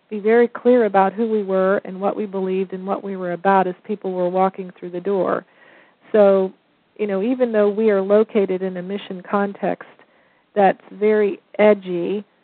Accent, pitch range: American, 185-215 Hz